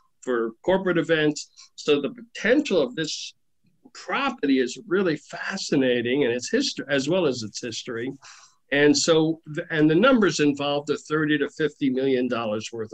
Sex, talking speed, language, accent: male, 150 wpm, English, American